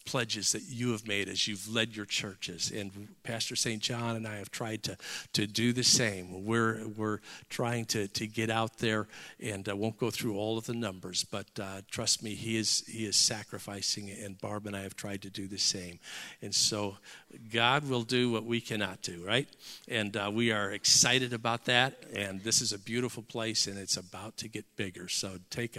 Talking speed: 210 wpm